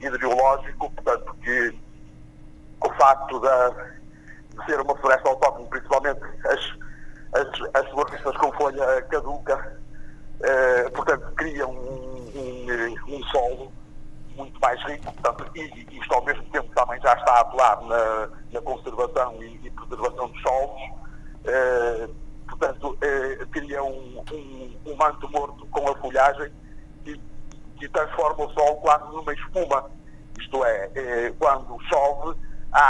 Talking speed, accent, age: 120 wpm, Brazilian, 50-69